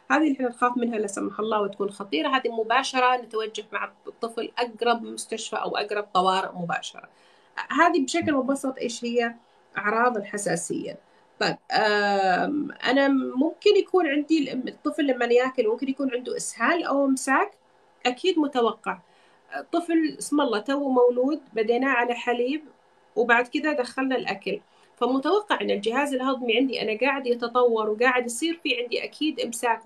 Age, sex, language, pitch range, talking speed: 30-49, female, Arabic, 230-275 Hz, 140 wpm